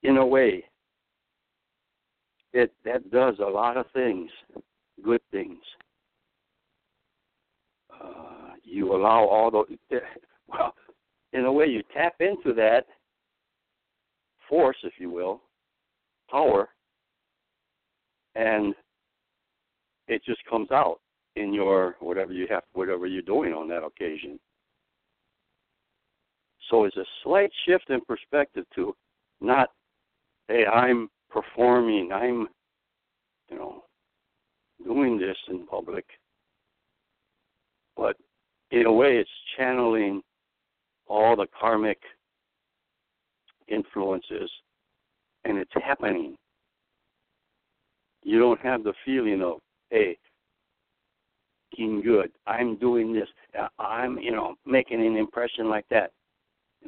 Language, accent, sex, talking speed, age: English, American, male, 105 wpm, 60-79